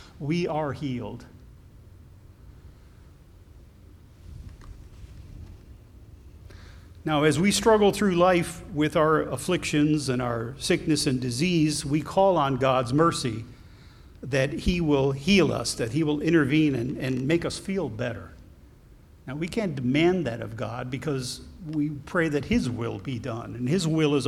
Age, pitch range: 50-69, 110-155 Hz